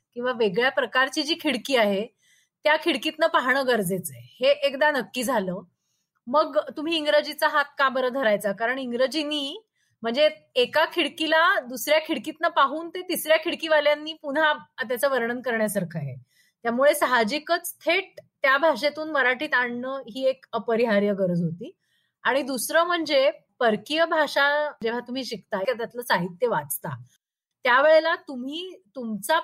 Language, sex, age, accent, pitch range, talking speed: Marathi, female, 30-49, native, 235-310 Hz, 130 wpm